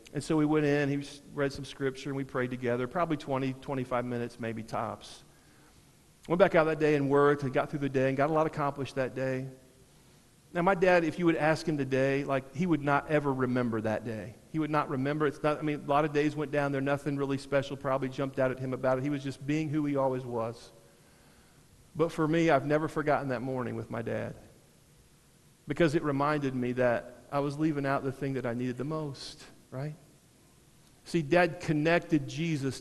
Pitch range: 130-160 Hz